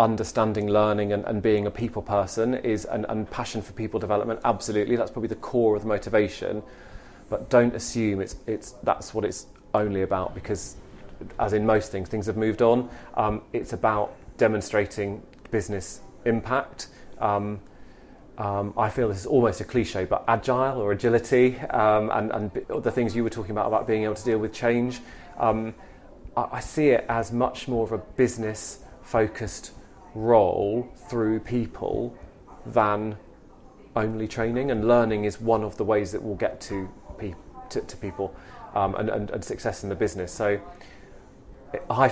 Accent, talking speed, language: British, 170 wpm, English